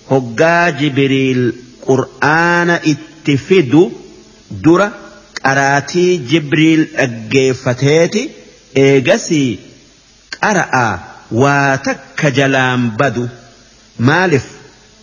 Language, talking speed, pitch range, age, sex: English, 60 wpm, 120-160 Hz, 50-69, male